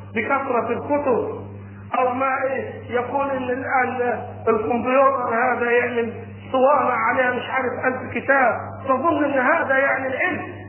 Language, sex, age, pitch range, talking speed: Arabic, male, 40-59, 225-355 Hz, 130 wpm